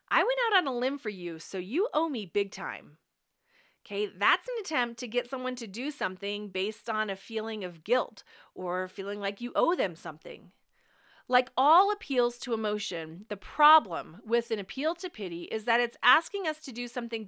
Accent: American